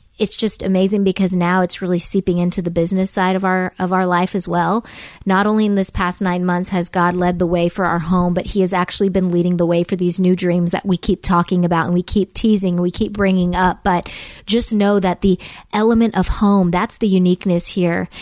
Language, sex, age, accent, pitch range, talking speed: English, female, 20-39, American, 180-215 Hz, 235 wpm